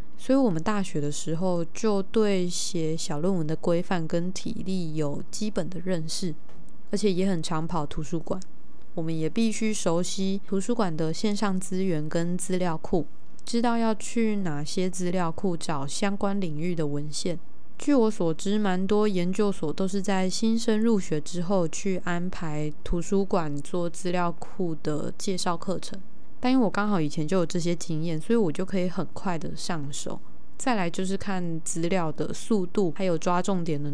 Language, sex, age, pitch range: Chinese, female, 20-39, 165-200 Hz